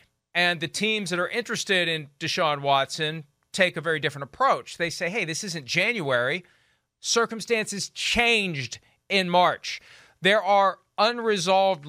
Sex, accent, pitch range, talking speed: male, American, 150-205 Hz, 135 wpm